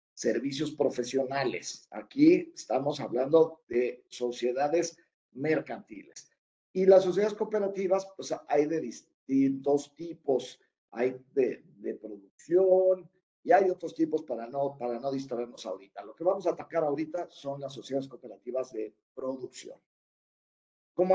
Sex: male